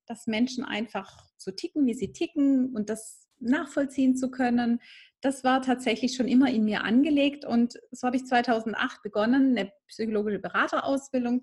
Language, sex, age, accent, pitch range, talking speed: German, female, 30-49, German, 220-265 Hz, 165 wpm